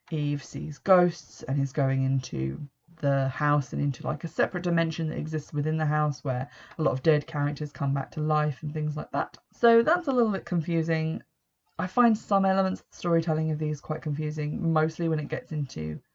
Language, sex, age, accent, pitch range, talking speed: English, female, 20-39, British, 145-175 Hz, 210 wpm